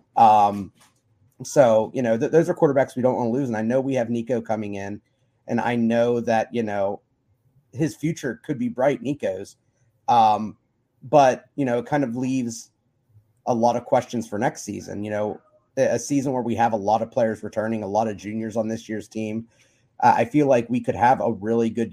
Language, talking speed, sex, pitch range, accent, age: English, 215 wpm, male, 110-130 Hz, American, 30-49